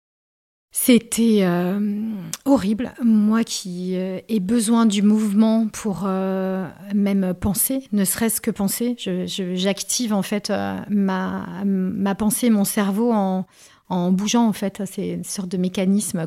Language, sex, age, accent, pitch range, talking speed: French, female, 40-59, French, 185-215 Hz, 145 wpm